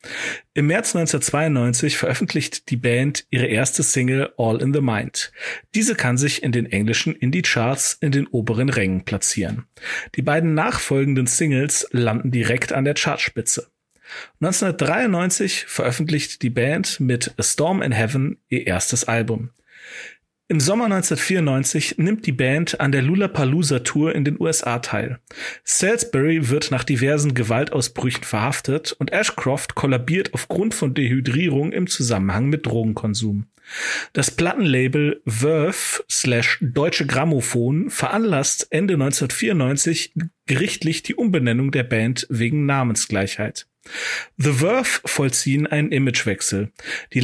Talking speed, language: 125 wpm, German